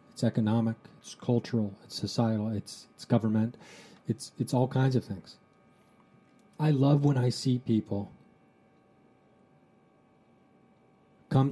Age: 40-59